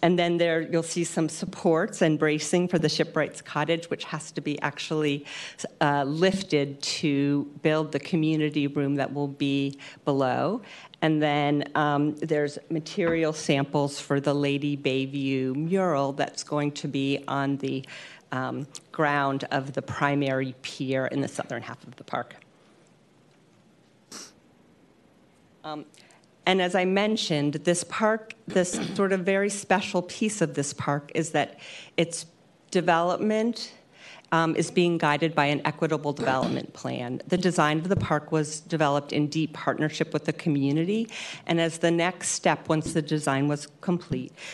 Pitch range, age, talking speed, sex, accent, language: 145-170 Hz, 40-59, 150 wpm, female, American, English